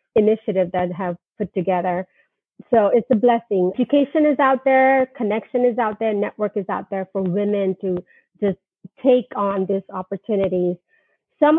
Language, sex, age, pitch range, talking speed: English, female, 30-49, 195-250 Hz, 155 wpm